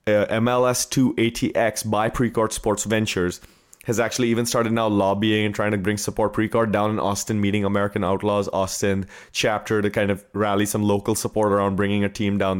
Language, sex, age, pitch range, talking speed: English, male, 20-39, 105-130 Hz, 190 wpm